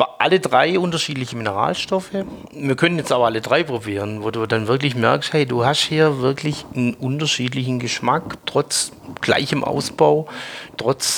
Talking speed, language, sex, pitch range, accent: 150 wpm, German, male, 125-165 Hz, German